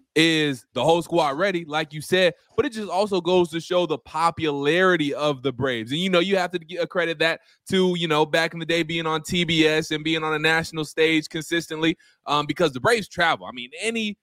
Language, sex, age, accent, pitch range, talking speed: English, male, 20-39, American, 145-175 Hz, 225 wpm